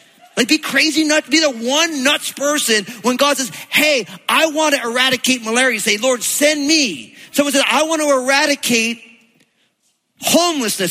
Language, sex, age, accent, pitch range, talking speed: English, male, 40-59, American, 250-310 Hz, 165 wpm